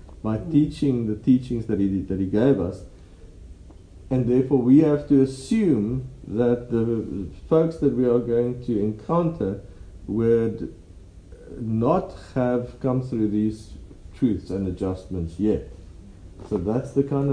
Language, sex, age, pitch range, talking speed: English, male, 50-69, 95-125 Hz, 130 wpm